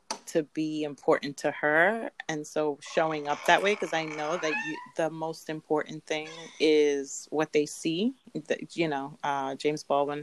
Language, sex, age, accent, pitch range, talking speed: English, female, 30-49, American, 145-165 Hz, 165 wpm